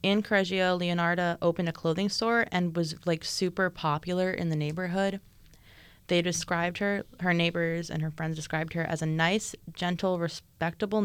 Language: English